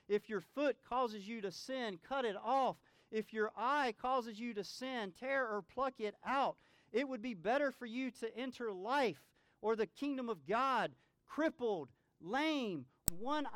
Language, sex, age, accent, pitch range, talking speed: English, male, 40-59, American, 165-265 Hz, 175 wpm